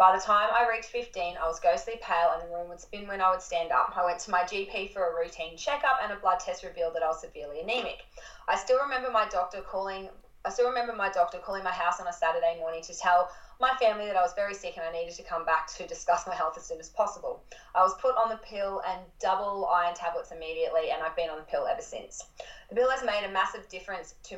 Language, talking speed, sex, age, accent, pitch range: English, 265 wpm, female, 20-39, Australian, 165-215 Hz